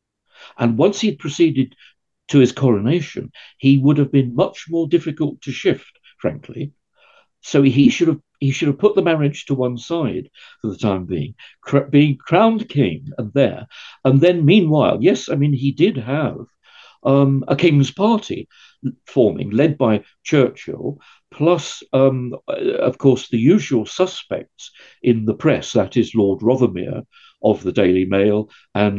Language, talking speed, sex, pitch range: English, 160 wpm, male, 115-155 Hz